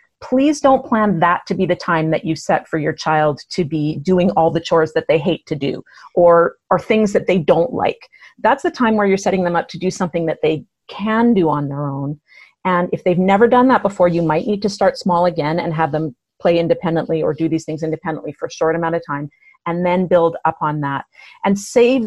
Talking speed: 240 wpm